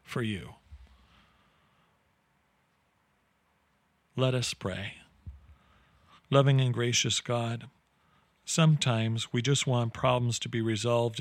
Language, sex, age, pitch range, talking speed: English, male, 40-59, 110-130 Hz, 90 wpm